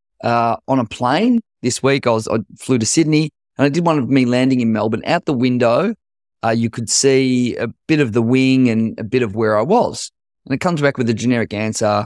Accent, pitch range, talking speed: Australian, 115-135 Hz, 240 wpm